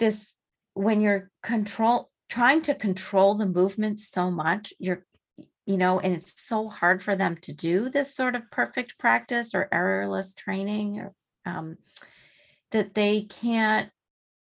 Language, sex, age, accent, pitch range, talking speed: English, female, 30-49, American, 185-225 Hz, 145 wpm